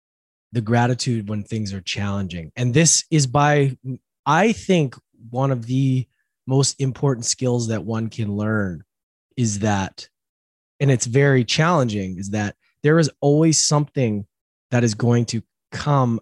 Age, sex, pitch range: 20-39, male, 110-145 Hz